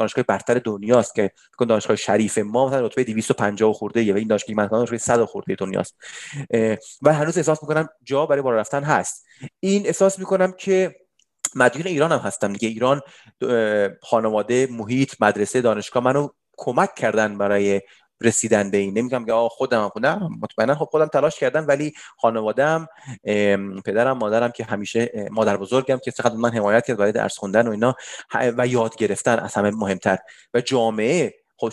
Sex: male